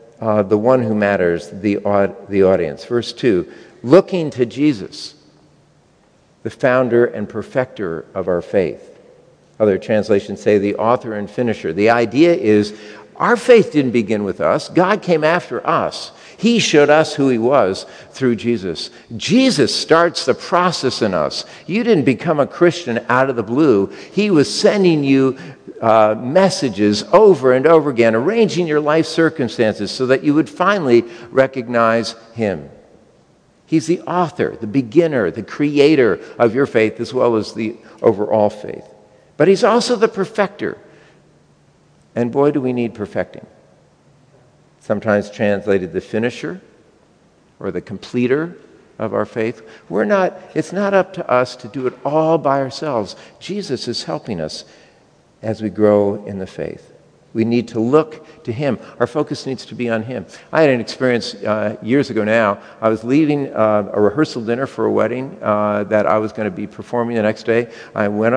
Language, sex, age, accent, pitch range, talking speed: English, male, 50-69, American, 110-155 Hz, 165 wpm